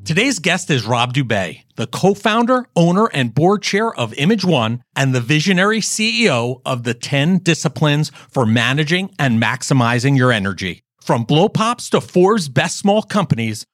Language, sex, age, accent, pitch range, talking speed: English, male, 40-59, American, 125-185 Hz, 155 wpm